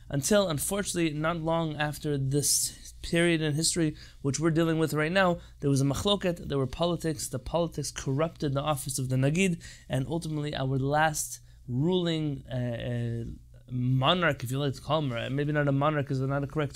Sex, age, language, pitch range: male, 20-39, English, 135-185 Hz